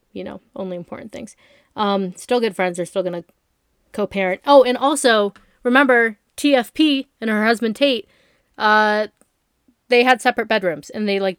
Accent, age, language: American, 20-39, English